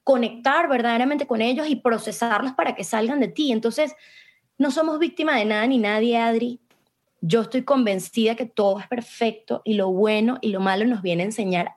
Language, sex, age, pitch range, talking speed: Spanish, female, 20-39, 205-245 Hz, 190 wpm